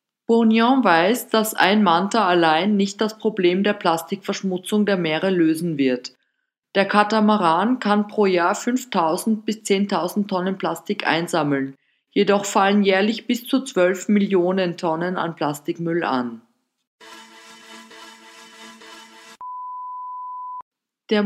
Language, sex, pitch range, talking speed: German, female, 170-220 Hz, 105 wpm